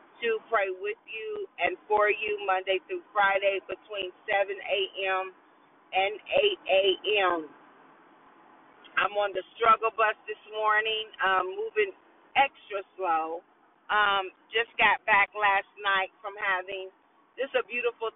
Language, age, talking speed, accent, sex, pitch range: English, 40-59, 125 wpm, American, female, 190-255 Hz